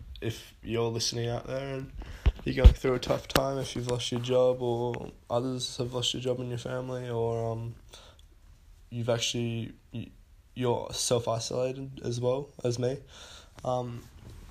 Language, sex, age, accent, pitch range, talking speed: English, male, 10-29, Australian, 110-125 Hz, 155 wpm